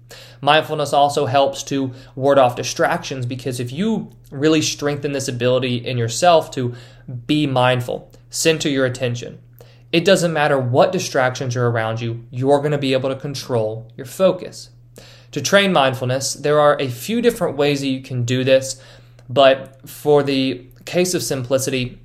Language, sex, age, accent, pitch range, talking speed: English, male, 20-39, American, 120-150 Hz, 160 wpm